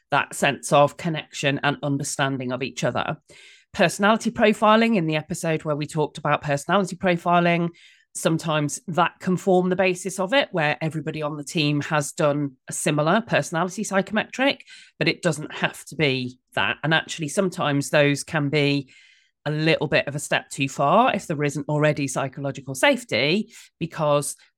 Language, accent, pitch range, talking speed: English, British, 145-190 Hz, 165 wpm